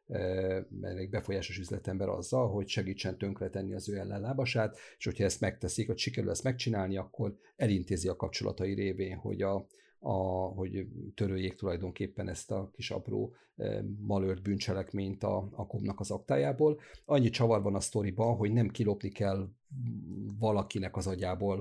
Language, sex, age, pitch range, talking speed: Hungarian, male, 50-69, 95-110 Hz, 145 wpm